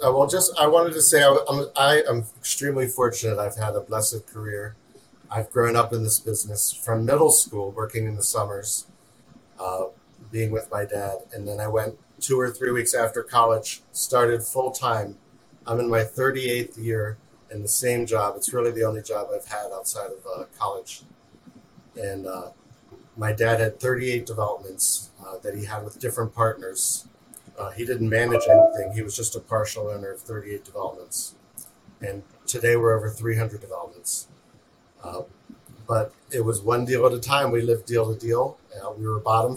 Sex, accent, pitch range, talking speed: male, American, 105-120 Hz, 185 wpm